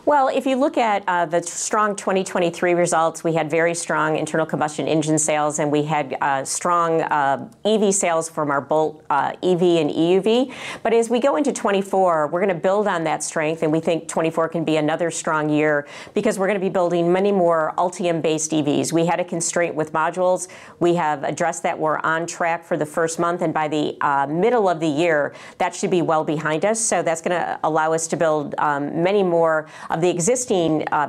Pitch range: 155-180 Hz